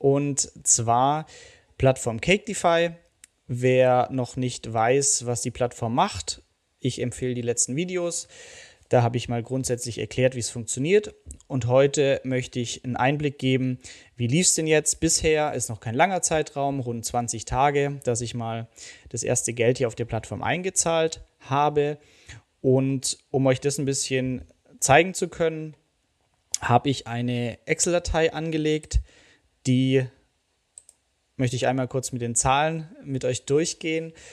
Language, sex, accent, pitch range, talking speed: German, male, German, 120-150 Hz, 150 wpm